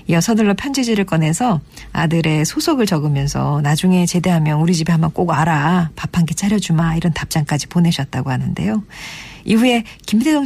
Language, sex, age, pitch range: Korean, female, 40-59, 155-210 Hz